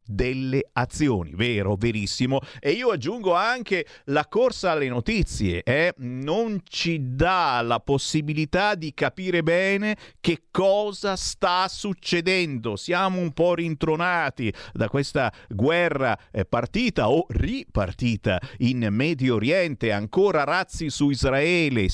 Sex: male